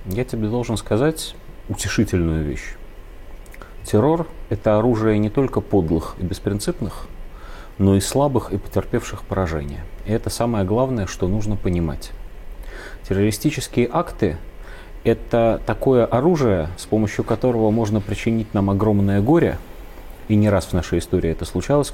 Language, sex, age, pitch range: Russian, male, 30-49, 90-120 Hz